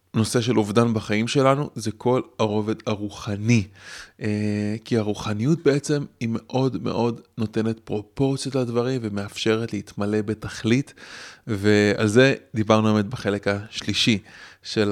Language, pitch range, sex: Hebrew, 105-115 Hz, male